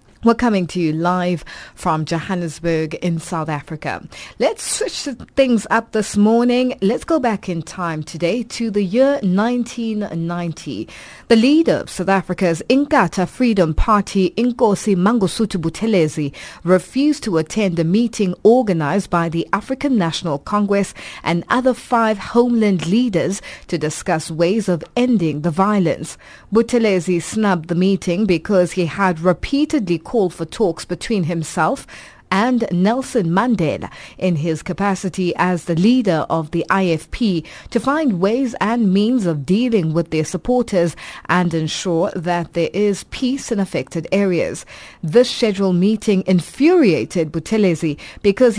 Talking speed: 135 wpm